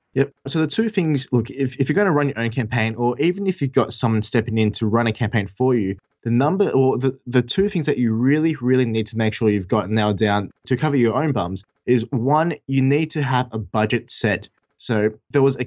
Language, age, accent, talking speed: English, 20-39, Australian, 255 wpm